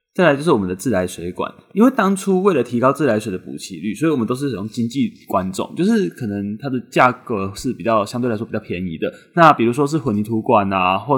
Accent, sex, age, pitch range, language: native, male, 20-39, 105-145 Hz, Chinese